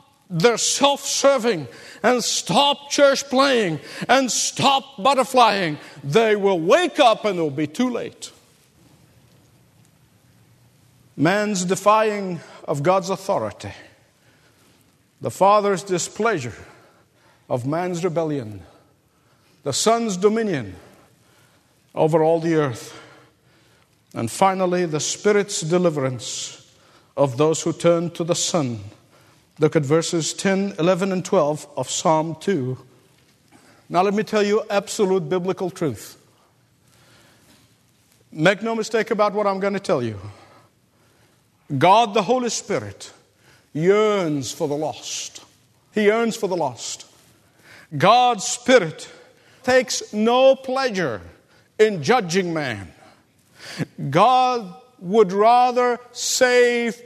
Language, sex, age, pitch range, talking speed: English, male, 50-69, 155-240 Hz, 105 wpm